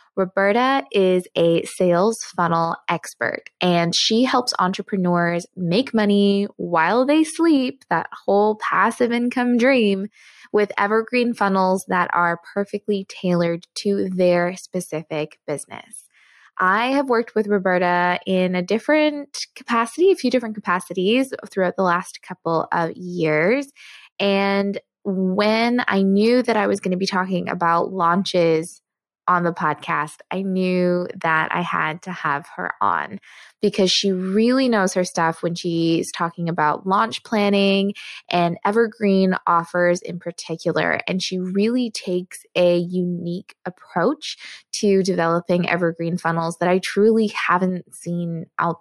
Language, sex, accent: English, female, American